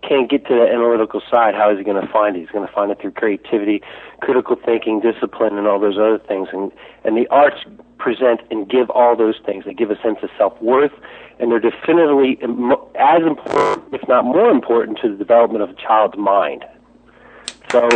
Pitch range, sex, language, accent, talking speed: 110-140 Hz, male, English, American, 205 wpm